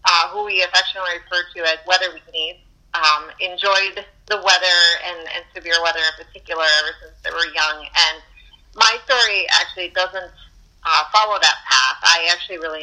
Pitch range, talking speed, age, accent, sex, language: 155-185 Hz, 165 wpm, 30-49, American, female, English